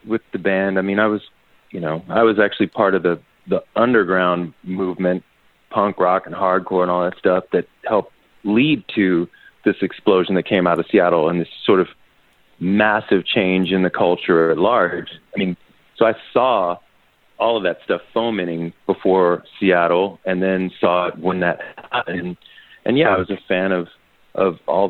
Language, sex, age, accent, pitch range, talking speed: English, male, 30-49, American, 90-110 Hz, 185 wpm